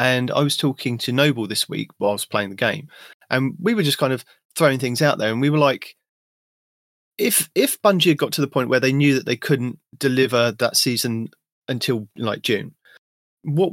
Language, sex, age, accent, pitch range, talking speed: English, male, 30-49, British, 125-150 Hz, 215 wpm